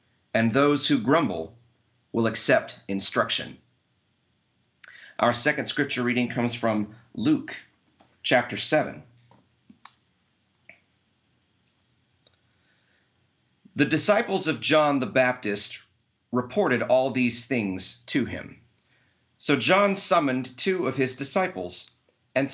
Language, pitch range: English, 115-150 Hz